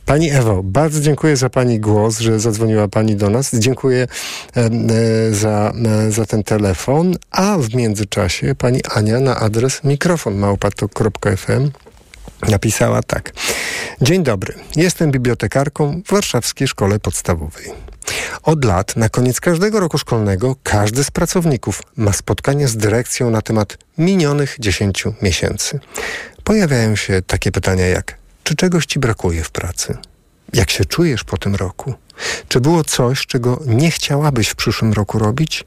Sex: male